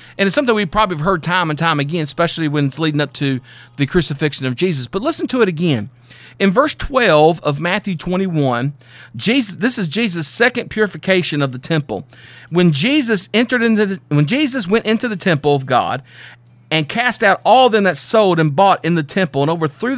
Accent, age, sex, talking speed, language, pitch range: American, 40-59, male, 205 wpm, English, 155-220 Hz